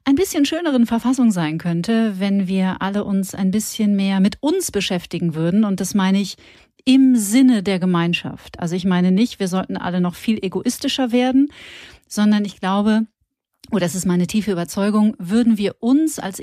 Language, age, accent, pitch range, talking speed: German, 40-59, German, 185-230 Hz, 180 wpm